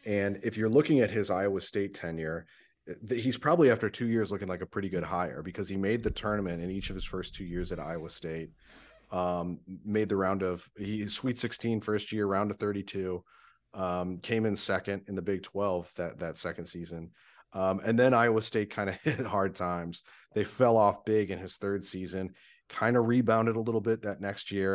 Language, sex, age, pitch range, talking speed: English, male, 30-49, 90-105 Hz, 215 wpm